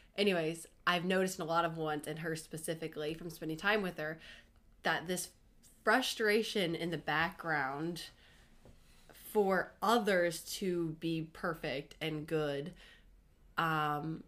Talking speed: 120 wpm